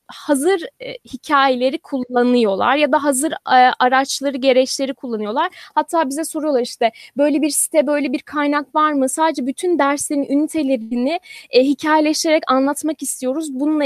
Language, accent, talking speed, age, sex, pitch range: Turkish, native, 140 wpm, 10-29, female, 260-320 Hz